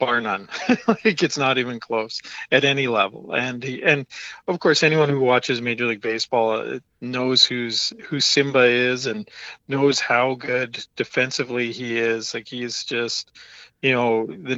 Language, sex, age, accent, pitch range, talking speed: English, male, 40-59, American, 115-130 Hz, 160 wpm